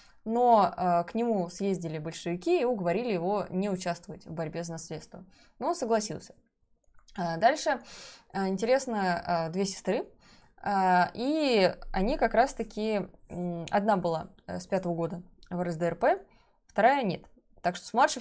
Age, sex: 20-39, female